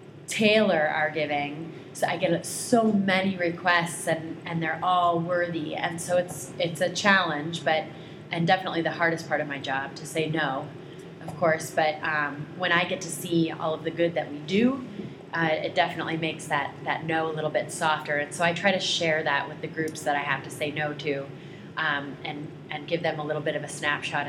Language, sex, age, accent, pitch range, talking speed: English, female, 30-49, American, 150-175 Hz, 215 wpm